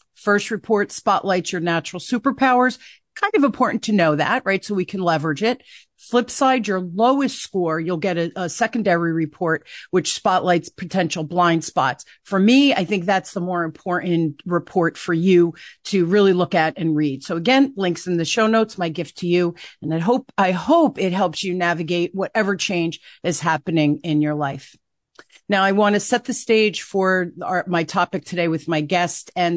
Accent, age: American, 40-59